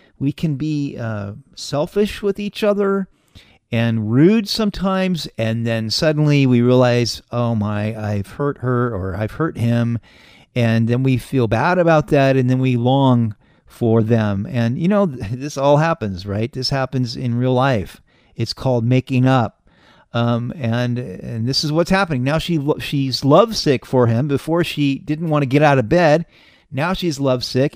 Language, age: English, 40-59